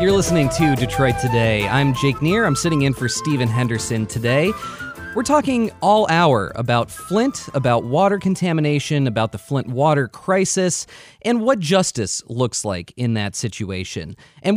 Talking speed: 155 wpm